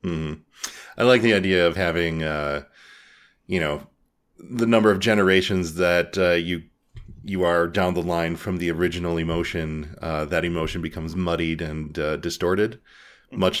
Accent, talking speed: American, 155 wpm